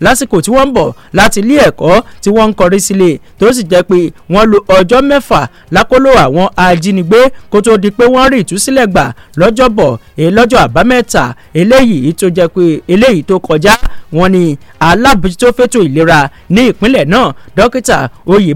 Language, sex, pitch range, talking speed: English, male, 175-235 Hz, 170 wpm